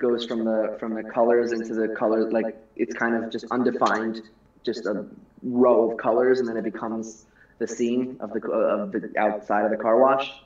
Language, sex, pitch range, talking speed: English, male, 110-130 Hz, 200 wpm